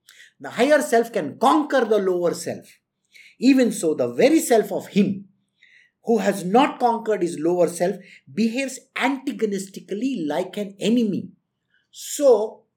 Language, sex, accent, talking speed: English, male, Indian, 130 wpm